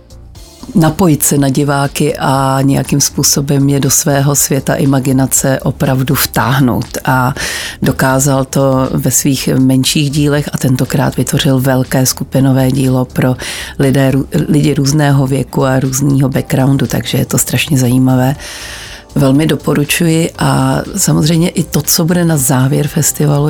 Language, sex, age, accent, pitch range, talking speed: Czech, female, 40-59, native, 135-150 Hz, 130 wpm